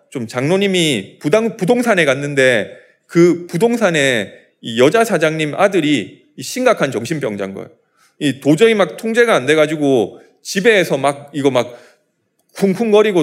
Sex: male